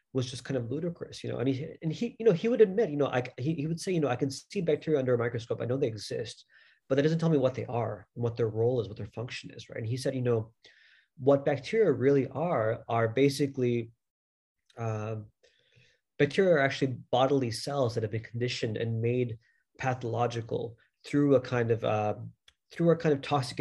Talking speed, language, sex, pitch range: 225 wpm, English, male, 115-145 Hz